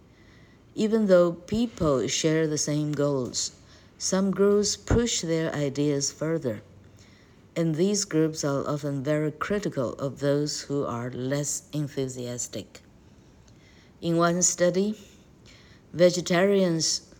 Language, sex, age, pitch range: Chinese, female, 60-79, 135-180 Hz